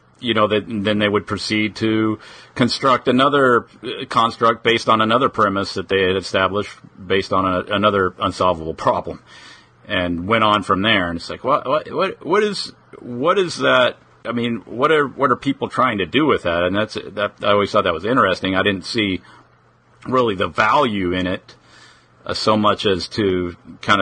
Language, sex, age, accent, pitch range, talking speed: English, male, 50-69, American, 95-110 Hz, 190 wpm